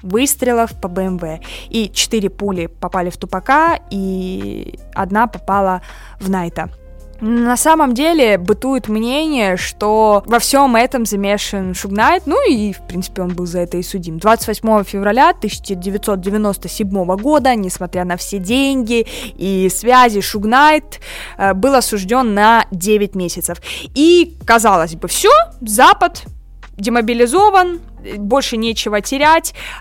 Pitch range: 195-255 Hz